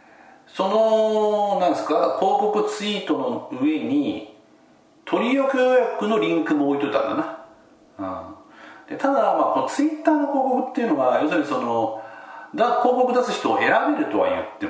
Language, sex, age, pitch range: Japanese, male, 40-59, 170-275 Hz